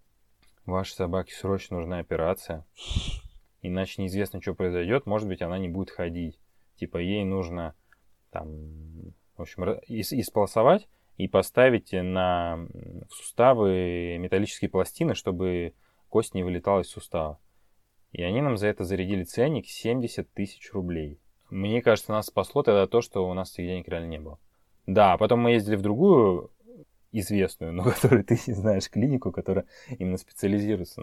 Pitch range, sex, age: 85-100 Hz, male, 20-39